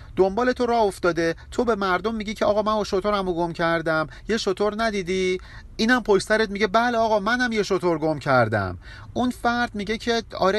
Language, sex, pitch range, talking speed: Persian, male, 135-215 Hz, 185 wpm